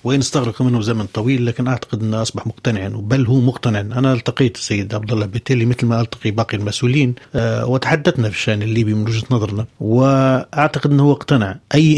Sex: male